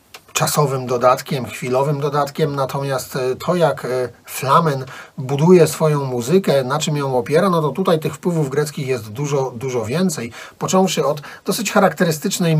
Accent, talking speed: native, 140 wpm